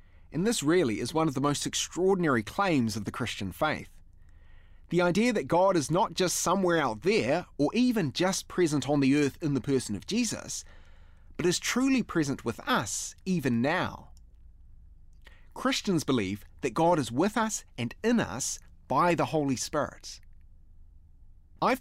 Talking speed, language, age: 160 wpm, English, 30-49